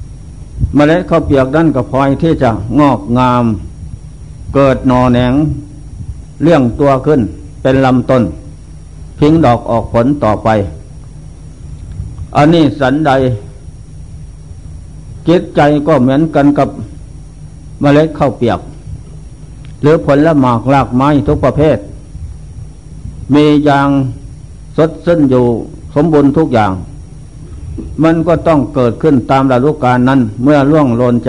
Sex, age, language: male, 60-79, Thai